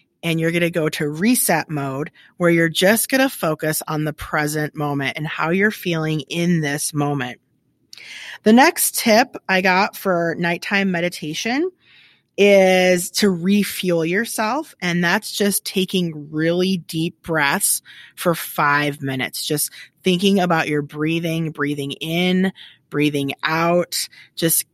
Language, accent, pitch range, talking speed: English, American, 155-190 Hz, 140 wpm